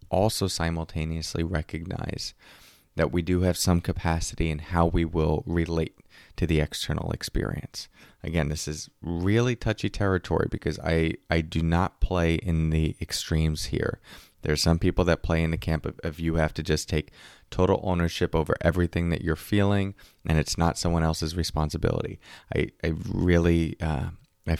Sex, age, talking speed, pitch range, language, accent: male, 30-49, 165 wpm, 80-95 Hz, English, American